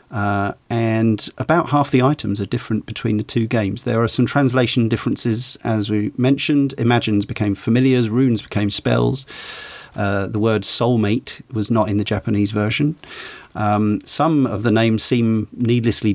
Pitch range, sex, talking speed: 105-125 Hz, male, 160 wpm